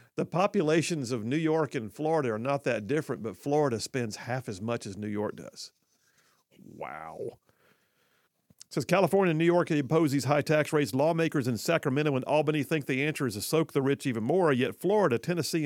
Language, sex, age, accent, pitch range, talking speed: English, male, 50-69, American, 125-160 Hz, 195 wpm